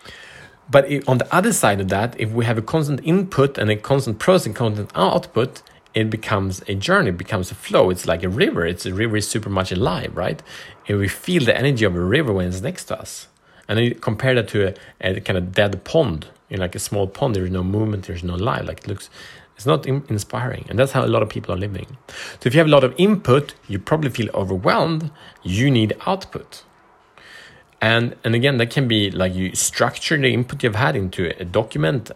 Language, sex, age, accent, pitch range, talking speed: Swedish, male, 30-49, Norwegian, 95-125 Hz, 230 wpm